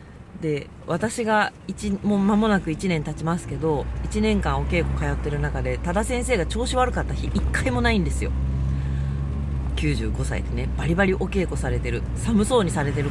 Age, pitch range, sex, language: 40-59, 105-170 Hz, female, Japanese